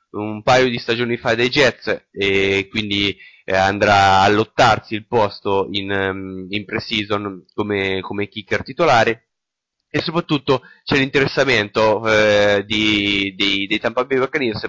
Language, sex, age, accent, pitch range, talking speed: Italian, male, 20-39, native, 100-115 Hz, 125 wpm